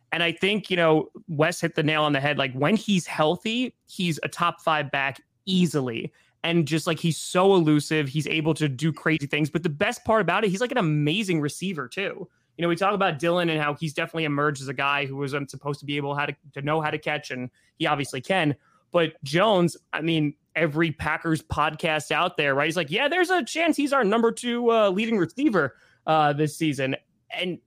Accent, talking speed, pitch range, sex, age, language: American, 225 wpm, 140-170 Hz, male, 20-39, English